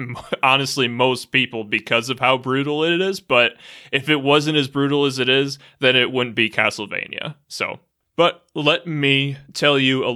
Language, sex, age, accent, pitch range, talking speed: English, male, 20-39, American, 115-140 Hz, 175 wpm